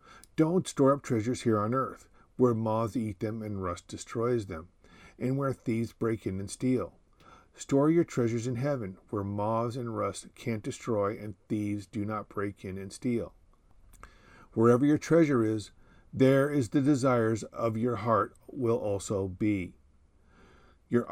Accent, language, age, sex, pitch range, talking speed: American, English, 50-69, male, 100-130 Hz, 160 wpm